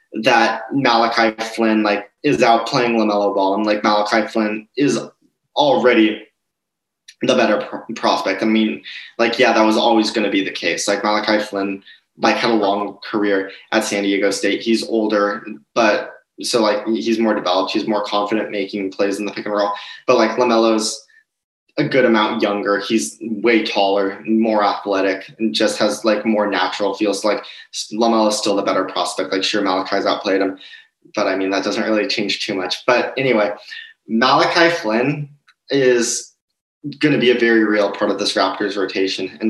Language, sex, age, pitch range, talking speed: English, male, 20-39, 100-115 Hz, 180 wpm